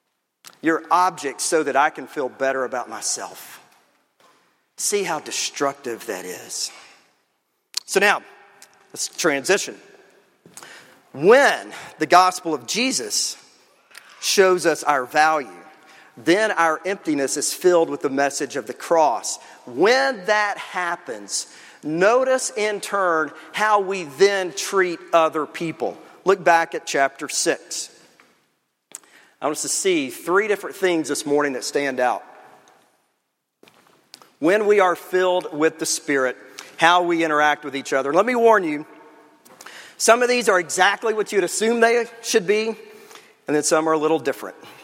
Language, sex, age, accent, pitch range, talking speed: English, male, 40-59, American, 145-205 Hz, 140 wpm